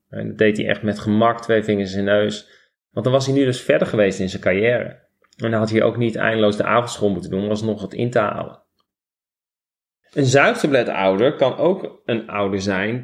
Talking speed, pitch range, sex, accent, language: 220 wpm, 105-125 Hz, male, Dutch, Dutch